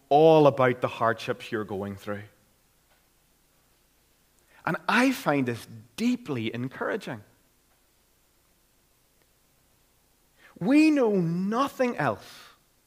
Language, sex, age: English, male, 30-49